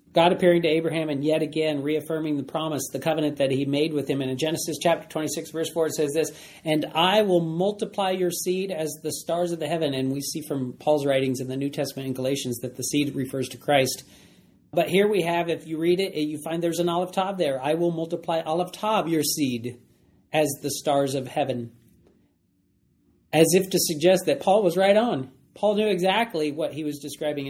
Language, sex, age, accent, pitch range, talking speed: English, male, 40-59, American, 140-175 Hz, 220 wpm